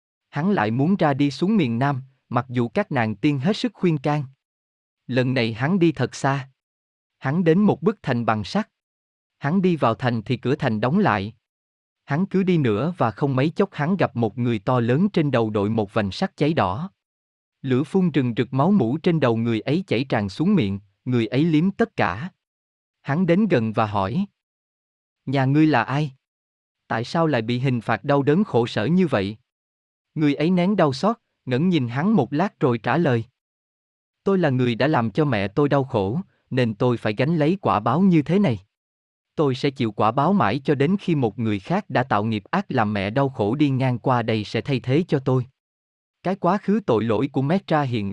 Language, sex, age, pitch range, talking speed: Vietnamese, male, 20-39, 115-160 Hz, 215 wpm